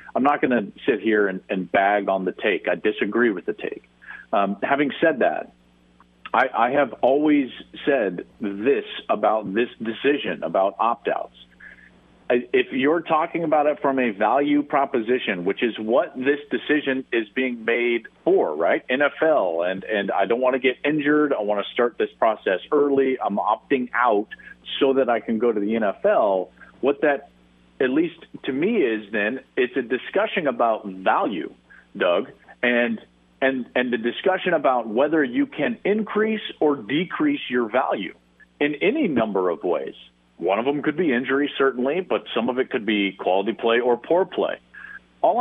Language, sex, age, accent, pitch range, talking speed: English, male, 50-69, American, 105-145 Hz, 170 wpm